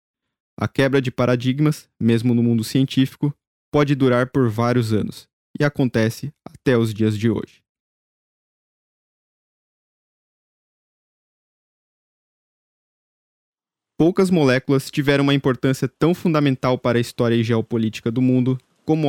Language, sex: Portuguese, male